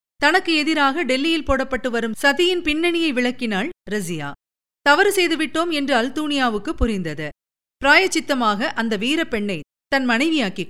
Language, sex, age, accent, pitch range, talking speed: Tamil, female, 50-69, native, 205-315 Hz, 110 wpm